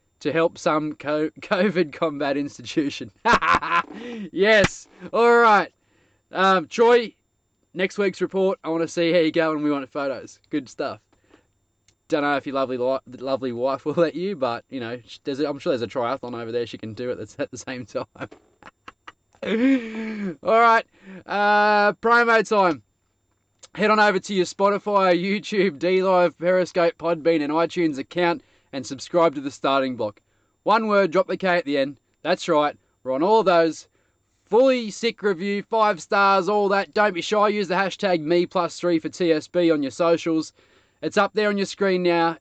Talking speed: 175 wpm